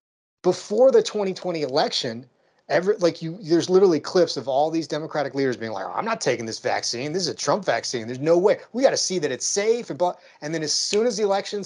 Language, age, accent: English, 30-49, American